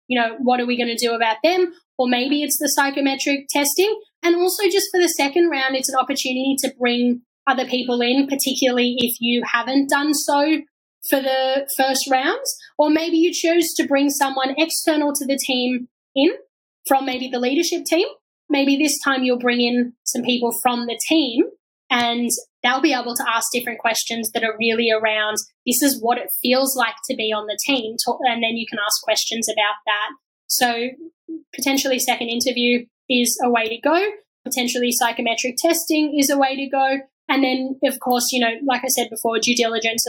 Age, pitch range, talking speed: 10-29, 245-290 Hz, 195 wpm